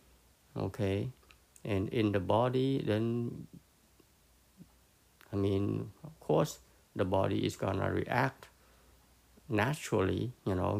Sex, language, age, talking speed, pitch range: male, English, 60-79, 105 wpm, 90-115 Hz